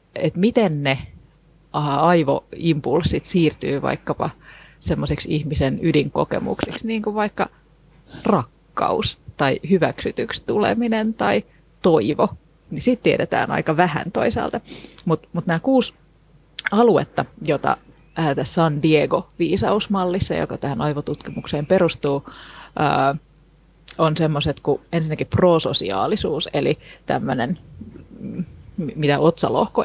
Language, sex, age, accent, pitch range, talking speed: Finnish, female, 30-49, native, 150-200 Hz, 90 wpm